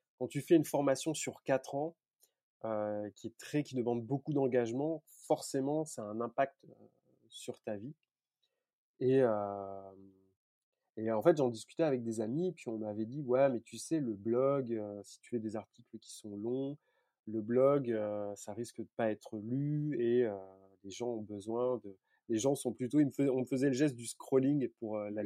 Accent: French